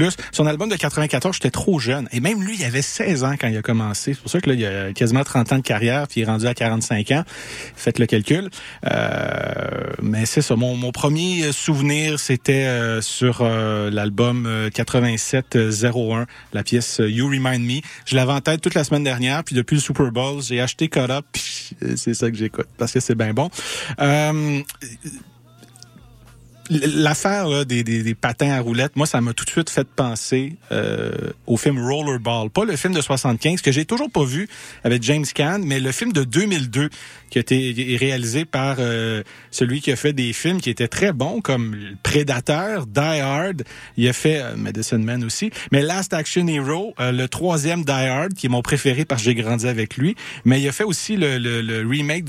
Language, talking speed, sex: French, 205 wpm, male